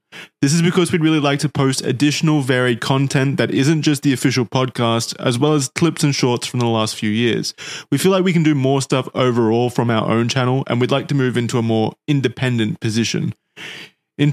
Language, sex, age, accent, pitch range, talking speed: English, male, 20-39, Australian, 115-140 Hz, 220 wpm